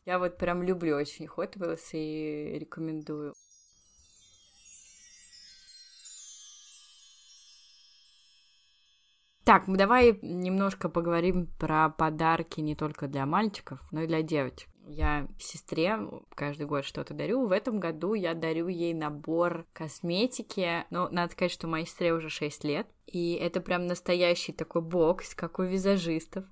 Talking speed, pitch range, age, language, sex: 125 wpm, 155-185 Hz, 20-39, Russian, female